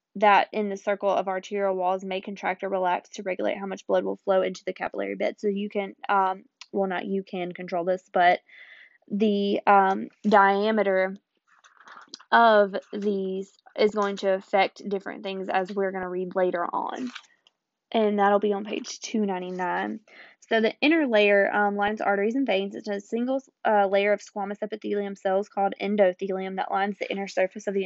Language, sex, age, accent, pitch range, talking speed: English, female, 20-39, American, 190-215 Hz, 180 wpm